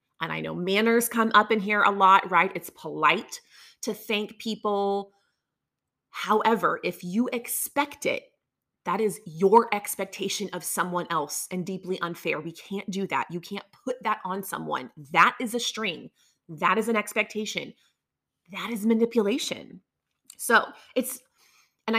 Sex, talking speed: female, 150 wpm